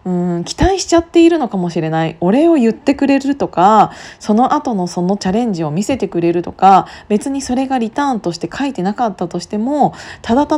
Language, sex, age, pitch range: Japanese, female, 20-39, 175-245 Hz